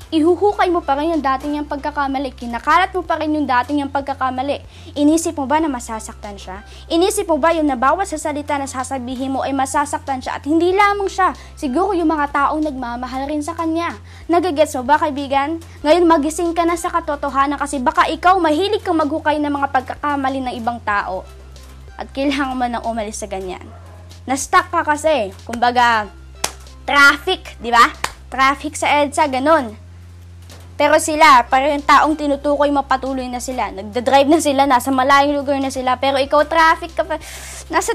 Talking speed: 170 wpm